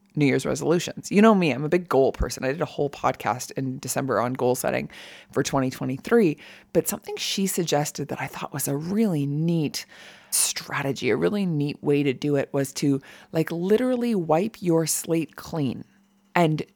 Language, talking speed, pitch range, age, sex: English, 185 wpm, 140-185 Hz, 20-39, female